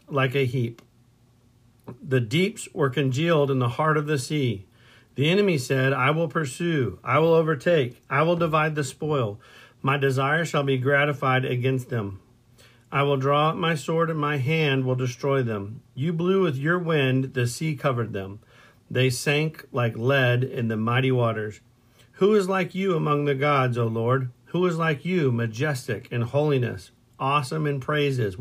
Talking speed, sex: 175 wpm, male